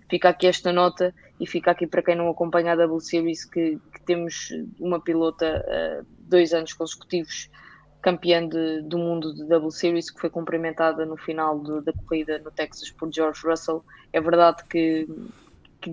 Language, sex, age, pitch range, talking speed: English, female, 20-39, 165-180 Hz, 170 wpm